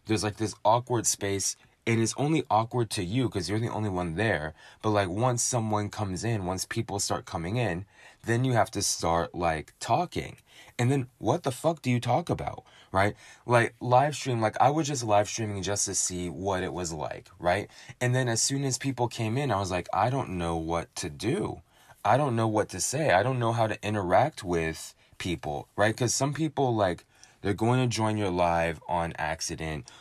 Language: English